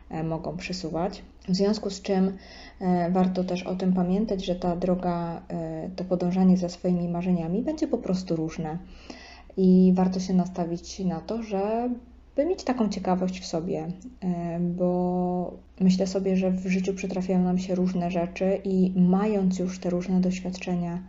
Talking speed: 150 wpm